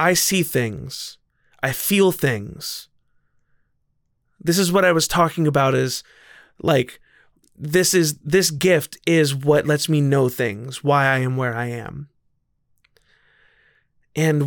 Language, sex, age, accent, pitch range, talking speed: English, male, 30-49, American, 135-175 Hz, 135 wpm